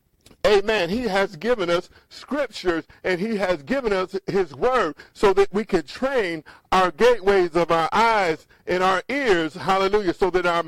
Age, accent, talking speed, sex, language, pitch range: 50-69, American, 170 wpm, male, English, 170-210 Hz